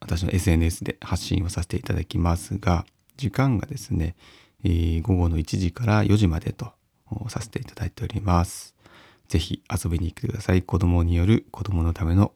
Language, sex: Japanese, male